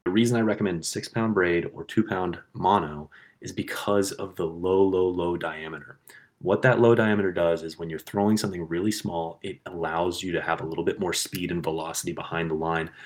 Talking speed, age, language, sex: 200 wpm, 30-49, English, male